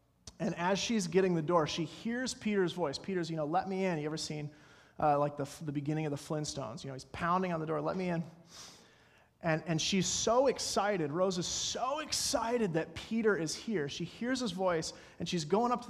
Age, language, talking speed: 30-49, English, 225 wpm